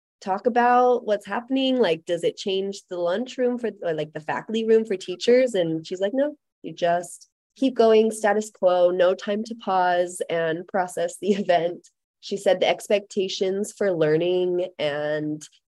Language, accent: English, American